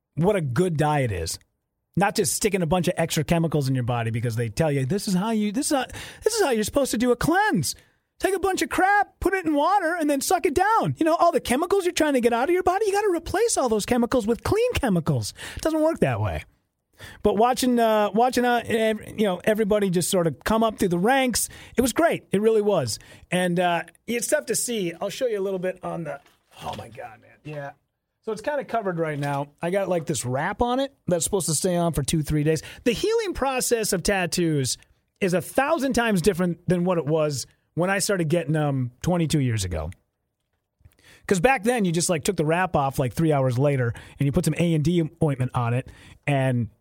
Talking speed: 240 wpm